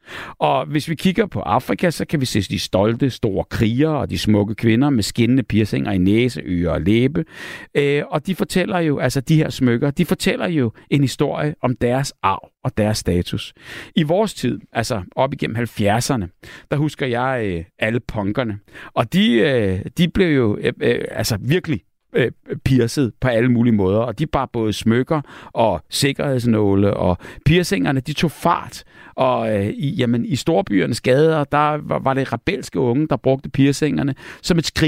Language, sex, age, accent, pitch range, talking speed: Danish, male, 60-79, native, 110-150 Hz, 180 wpm